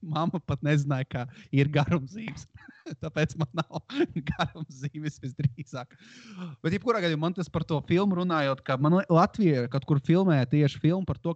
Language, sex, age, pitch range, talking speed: English, male, 30-49, 130-160 Hz, 170 wpm